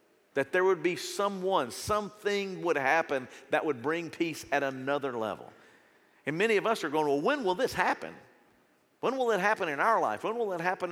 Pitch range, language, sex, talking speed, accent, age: 150-200 Hz, English, male, 205 wpm, American, 50-69